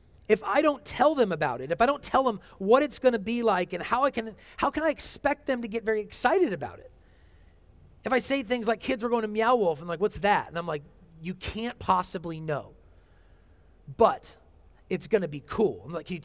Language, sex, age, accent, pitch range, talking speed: English, male, 30-49, American, 150-240 Hz, 235 wpm